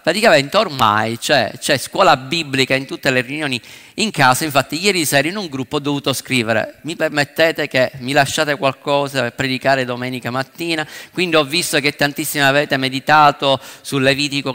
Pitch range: 130-165 Hz